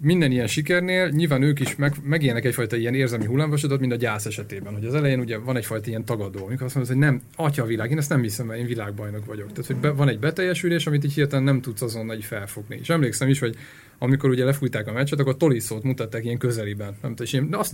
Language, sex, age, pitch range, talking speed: Hungarian, male, 30-49, 115-150 Hz, 250 wpm